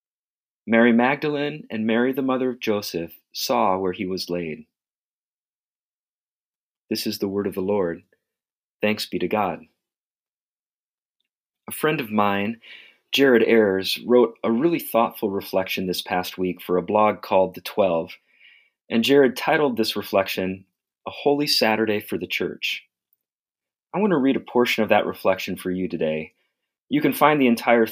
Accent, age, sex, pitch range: American, 40-59, male, 95-125 Hz